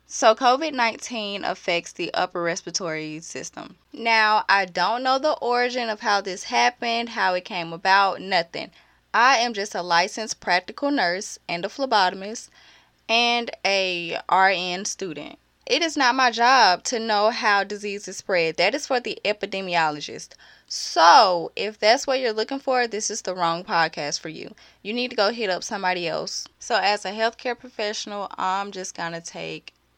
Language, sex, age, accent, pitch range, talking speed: English, female, 10-29, American, 175-225 Hz, 170 wpm